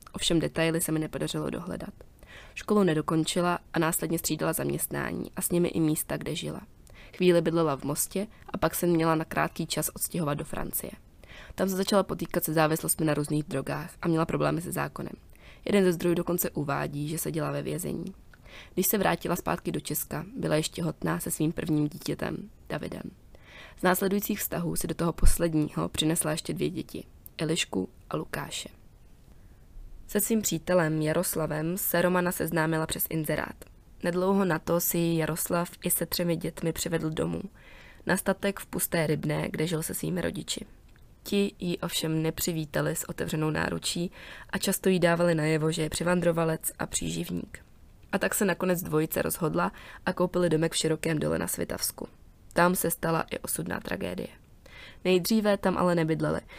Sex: female